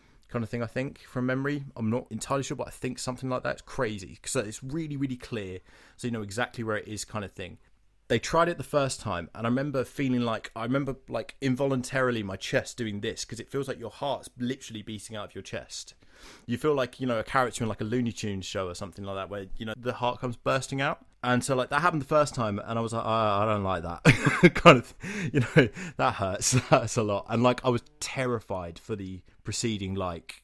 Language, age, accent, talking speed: English, 20-39, British, 245 wpm